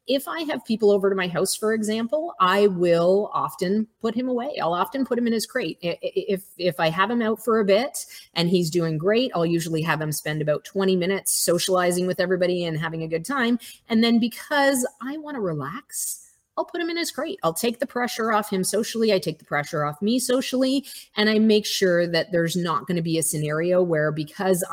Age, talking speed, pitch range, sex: 30-49, 225 wpm, 160-220 Hz, female